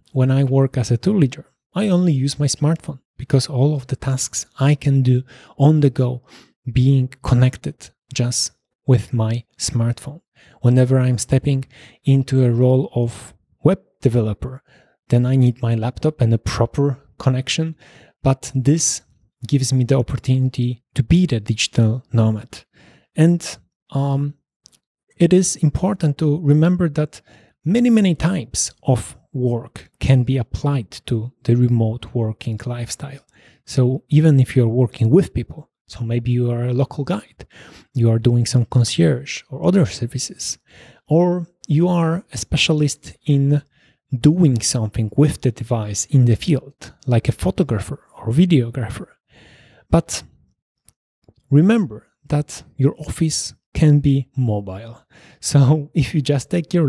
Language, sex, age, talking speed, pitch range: Polish, male, 30-49, 140 wpm, 120-150 Hz